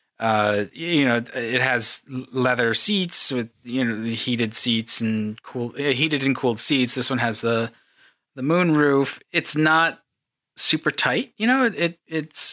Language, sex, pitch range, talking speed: English, male, 115-150 Hz, 170 wpm